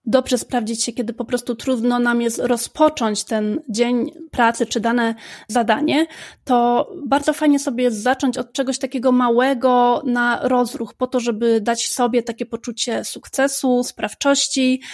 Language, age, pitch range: Polish, 30-49, 230-270 Hz